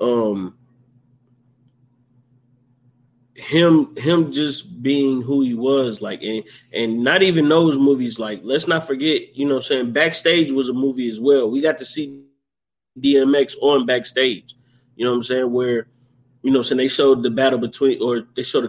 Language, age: English, 20-39